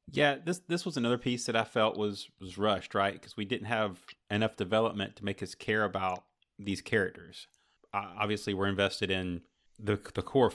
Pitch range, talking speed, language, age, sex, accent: 90-110 Hz, 195 wpm, English, 30-49, male, American